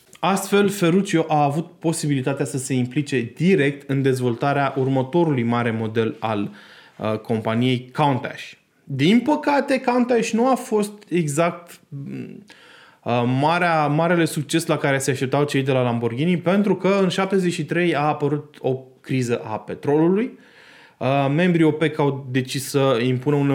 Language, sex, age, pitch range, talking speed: Romanian, male, 20-39, 130-165 Hz, 140 wpm